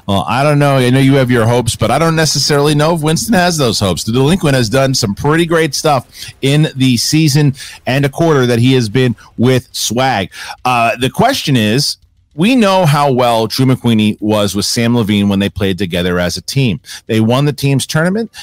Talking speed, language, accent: 215 wpm, English, American